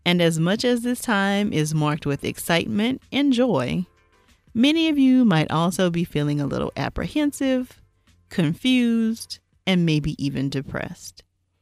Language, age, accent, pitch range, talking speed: English, 40-59, American, 145-220 Hz, 140 wpm